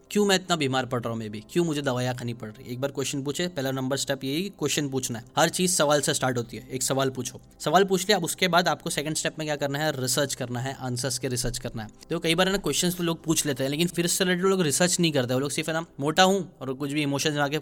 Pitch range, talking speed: 130-160 Hz, 295 wpm